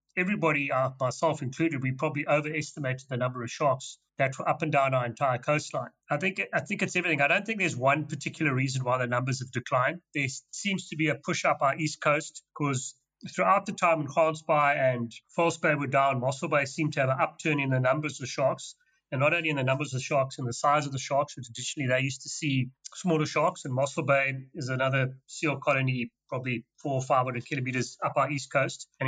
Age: 30-49